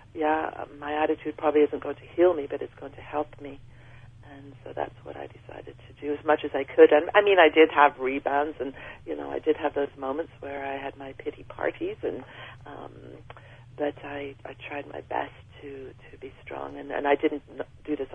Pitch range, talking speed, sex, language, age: 130-150 Hz, 220 wpm, female, English, 40-59